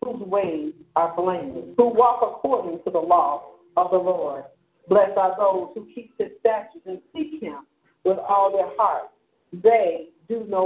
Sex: female